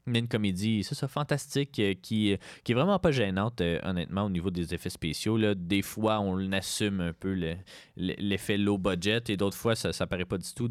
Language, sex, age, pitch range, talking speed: French, male, 20-39, 90-120 Hz, 225 wpm